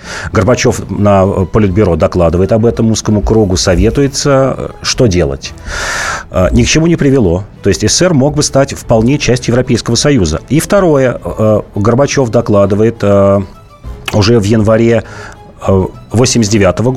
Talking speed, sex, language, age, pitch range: 120 wpm, male, Russian, 30-49, 90-120 Hz